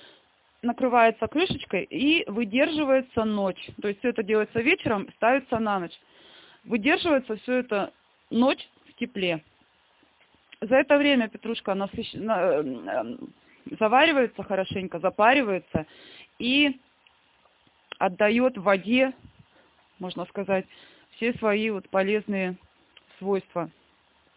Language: Russian